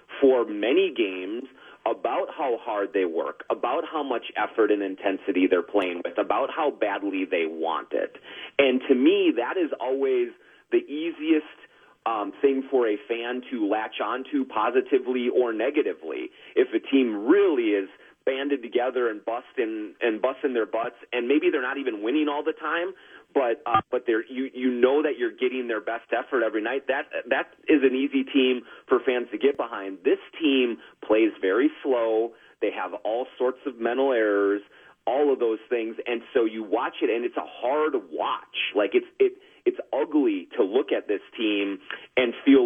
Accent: American